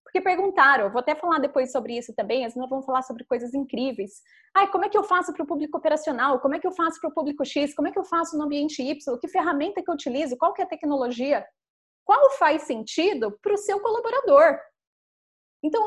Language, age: Portuguese, 20-39